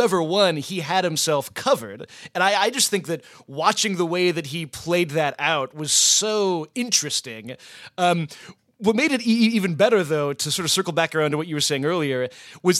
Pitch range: 150-190 Hz